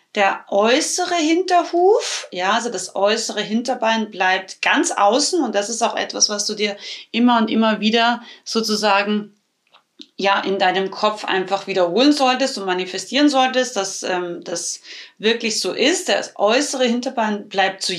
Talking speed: 150 wpm